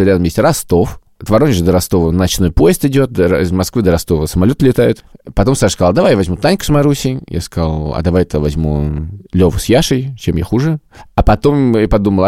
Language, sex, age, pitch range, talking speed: Russian, male, 20-39, 90-120 Hz, 195 wpm